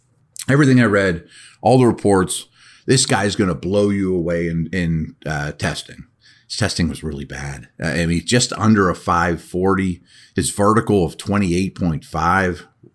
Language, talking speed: English, 160 wpm